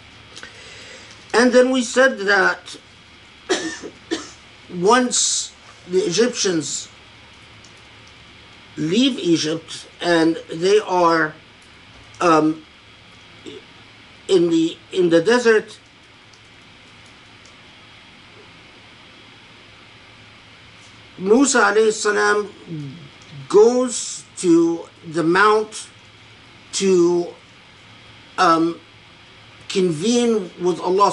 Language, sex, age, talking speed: English, male, 50-69, 60 wpm